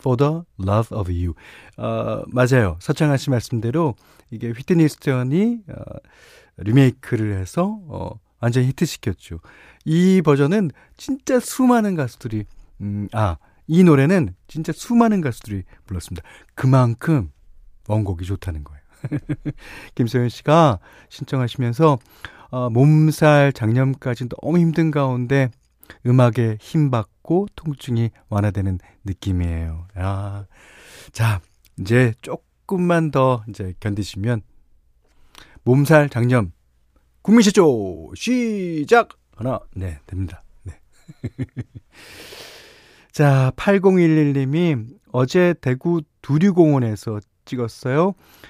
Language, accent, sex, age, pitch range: Korean, native, male, 40-59, 100-150 Hz